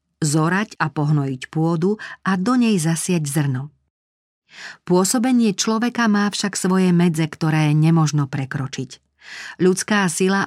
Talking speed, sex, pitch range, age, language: 115 wpm, female, 150-195 Hz, 40-59, Slovak